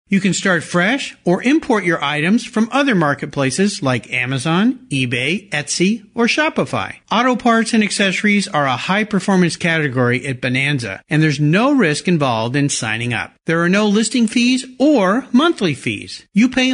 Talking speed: 160 wpm